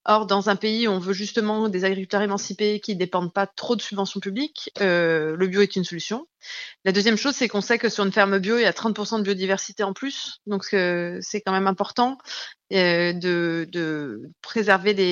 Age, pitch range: 30-49, 195-240 Hz